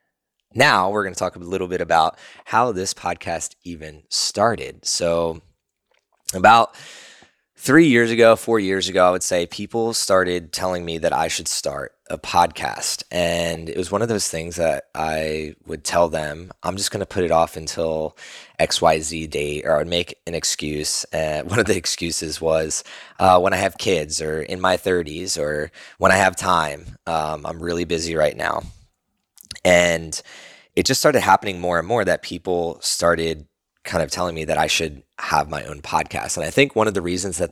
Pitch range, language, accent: 80-95 Hz, English, American